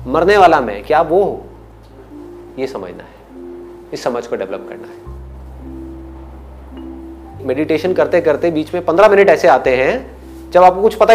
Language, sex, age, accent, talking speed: Hindi, male, 30-49, native, 155 wpm